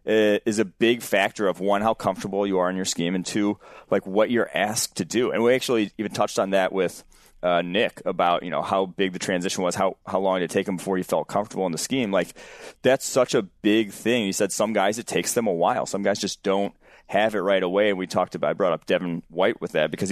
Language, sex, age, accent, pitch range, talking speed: English, male, 30-49, American, 85-100 Hz, 265 wpm